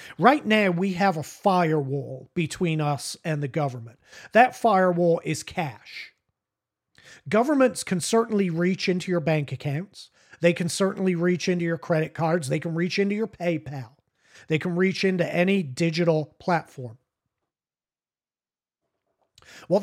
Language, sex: English, male